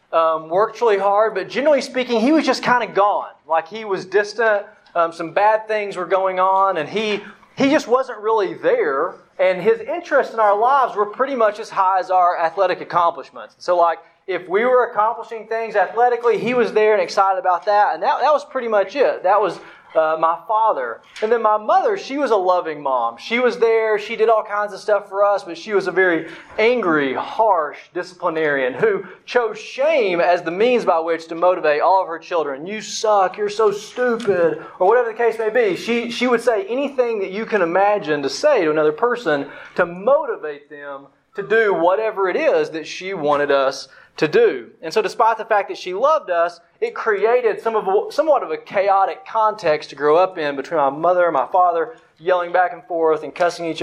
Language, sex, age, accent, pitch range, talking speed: English, male, 30-49, American, 175-235 Hz, 210 wpm